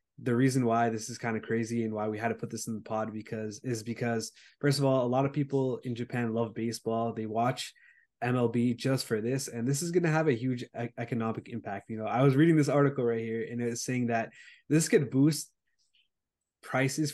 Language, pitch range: English, 115-135 Hz